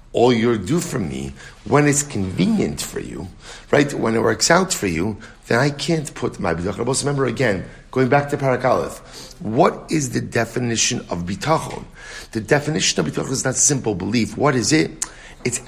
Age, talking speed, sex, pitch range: 50-69, 185 wpm, male, 115-150 Hz